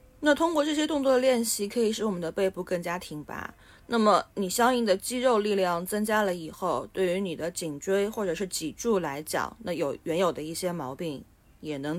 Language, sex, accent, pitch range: Chinese, female, native, 160-215 Hz